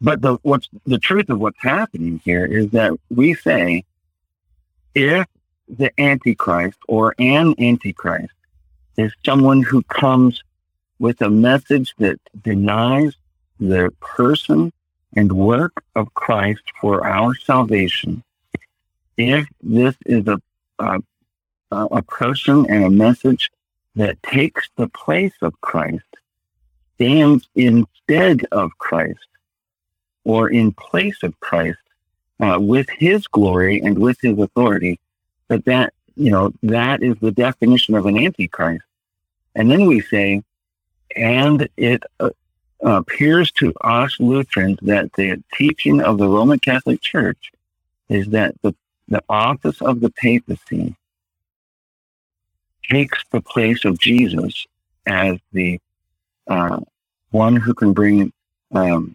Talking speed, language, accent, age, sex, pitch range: 120 wpm, English, American, 60-79, male, 85-125 Hz